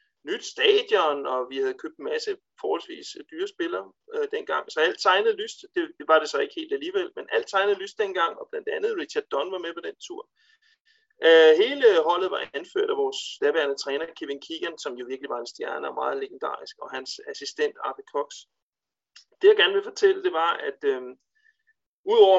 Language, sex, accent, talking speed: Danish, male, native, 200 wpm